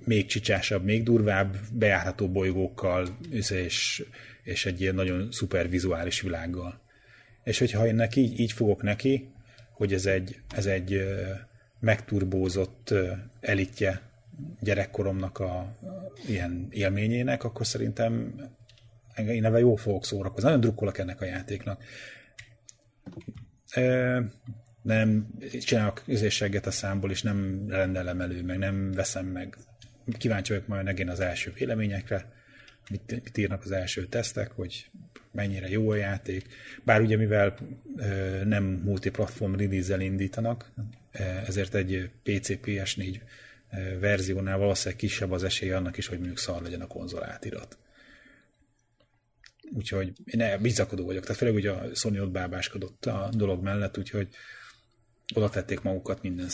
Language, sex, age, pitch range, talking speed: Hungarian, male, 30-49, 95-115 Hz, 125 wpm